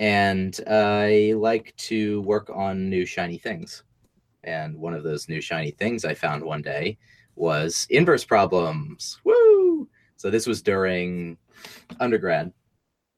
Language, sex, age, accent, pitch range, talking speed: English, male, 30-49, American, 85-115 Hz, 135 wpm